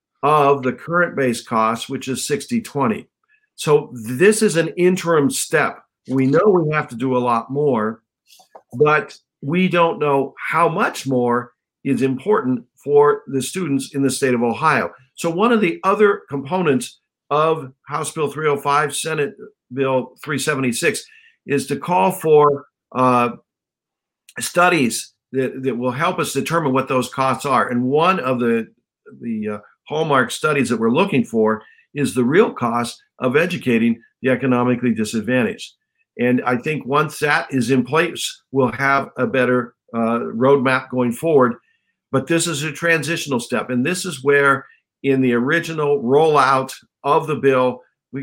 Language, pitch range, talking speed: English, 125-160 Hz, 155 wpm